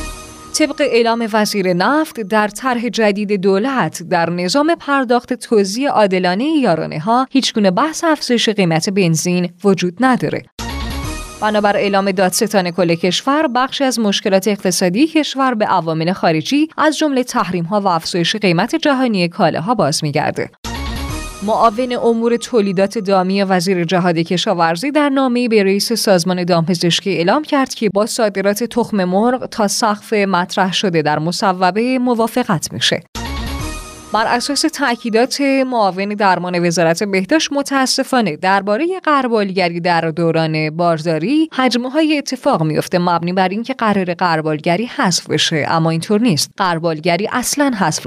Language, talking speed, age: Persian, 130 wpm, 20-39